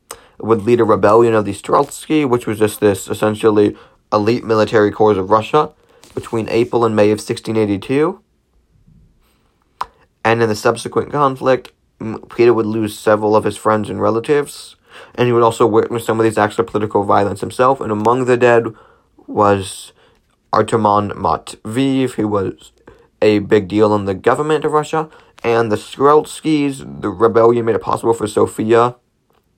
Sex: male